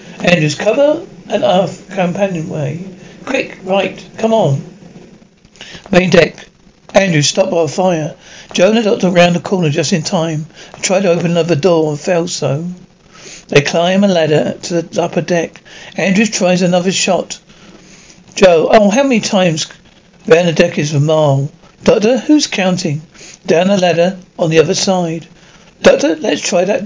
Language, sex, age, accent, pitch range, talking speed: English, male, 60-79, British, 165-195 Hz, 160 wpm